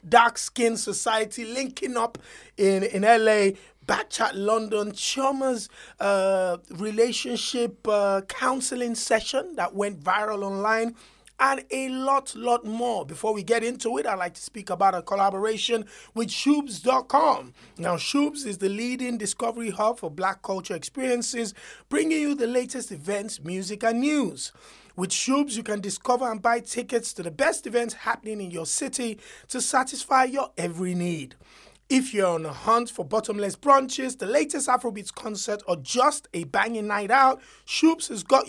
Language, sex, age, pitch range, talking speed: English, male, 30-49, 205-260 Hz, 155 wpm